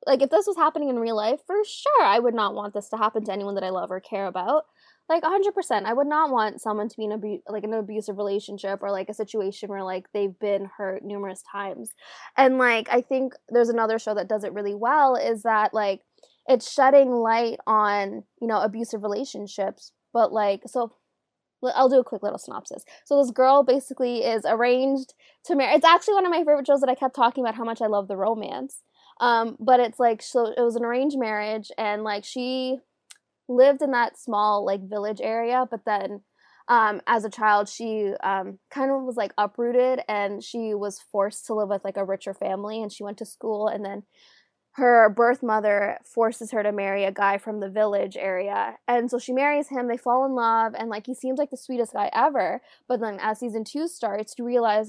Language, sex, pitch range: English, female, 205-255 Hz